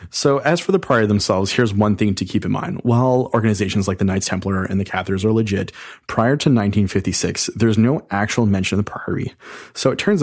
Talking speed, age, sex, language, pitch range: 215 wpm, 30-49, male, English, 100-120 Hz